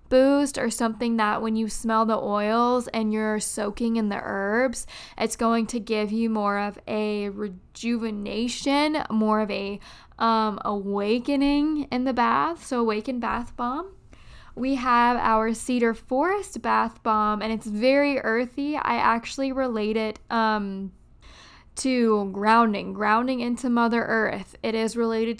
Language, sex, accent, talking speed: English, female, American, 145 wpm